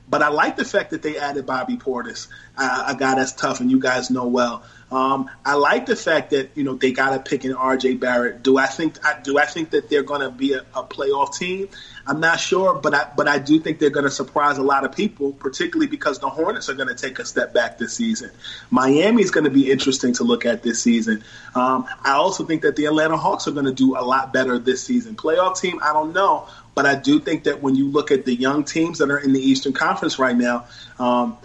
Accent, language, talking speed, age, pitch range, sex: American, English, 250 wpm, 30-49, 130-155 Hz, male